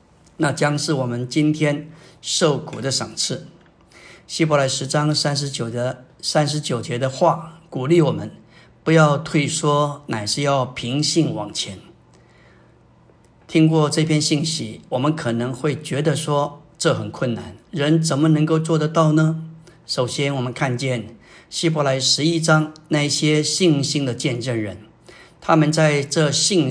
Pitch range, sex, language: 135-160 Hz, male, Chinese